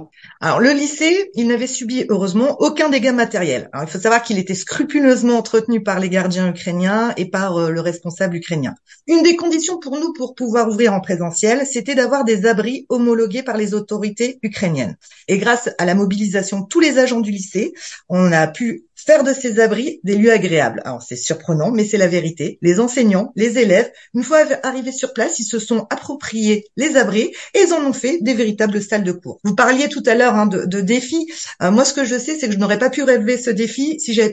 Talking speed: 220 wpm